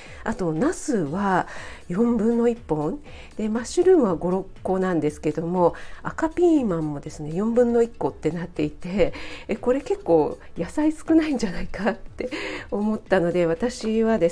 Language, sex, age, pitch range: Japanese, female, 50-69, 165-245 Hz